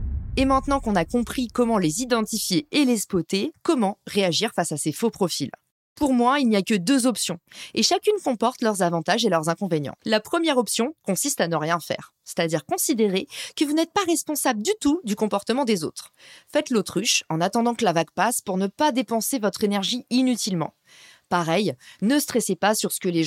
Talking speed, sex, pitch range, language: 200 wpm, female, 195-270 Hz, French